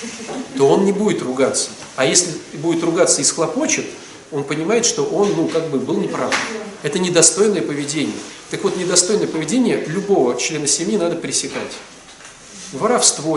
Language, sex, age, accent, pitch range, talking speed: Russian, male, 40-59, native, 135-200 Hz, 150 wpm